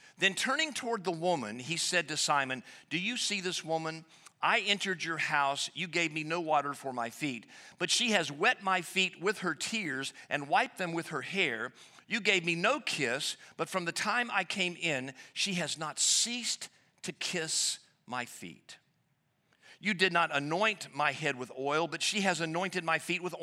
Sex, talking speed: male, 195 wpm